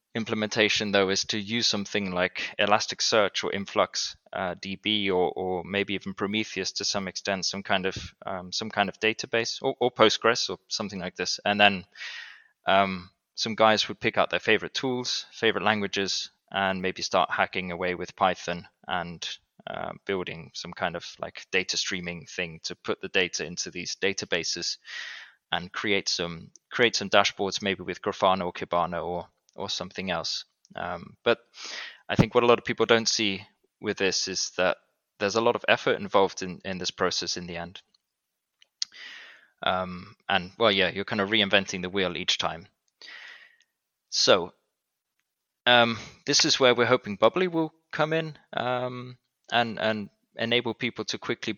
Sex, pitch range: male, 95-115 Hz